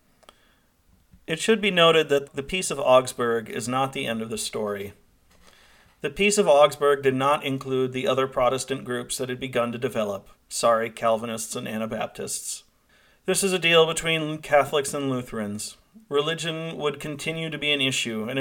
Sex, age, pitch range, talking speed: male, 40-59, 120-145 Hz, 170 wpm